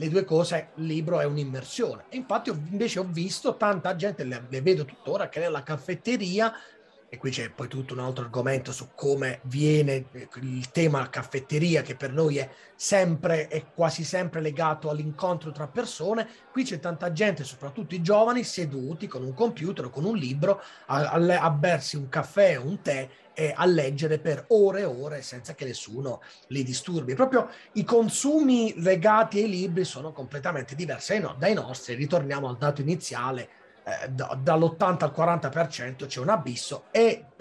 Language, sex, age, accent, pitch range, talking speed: Italian, male, 30-49, native, 135-200 Hz, 165 wpm